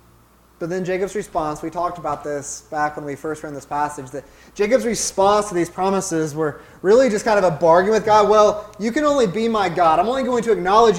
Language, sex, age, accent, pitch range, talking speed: English, male, 20-39, American, 140-195 Hz, 230 wpm